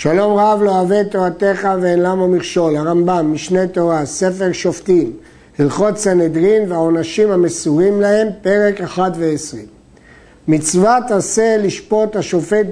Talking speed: 120 wpm